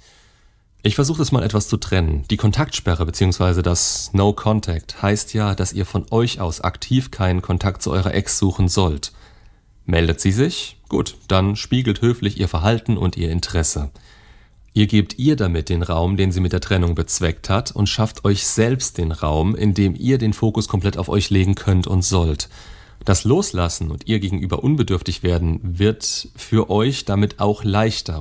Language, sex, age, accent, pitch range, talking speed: German, male, 30-49, German, 85-105 Hz, 175 wpm